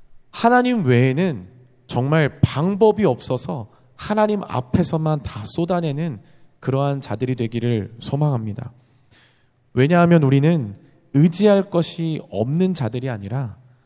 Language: Korean